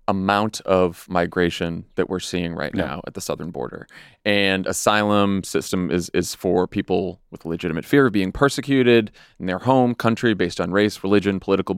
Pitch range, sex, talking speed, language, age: 95-115 Hz, male, 175 wpm, English, 30-49